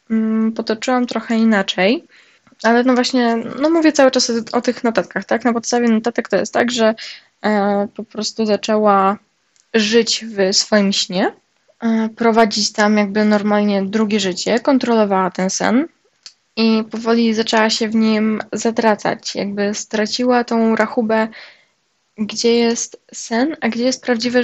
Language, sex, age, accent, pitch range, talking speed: Polish, female, 10-29, native, 205-240 Hz, 135 wpm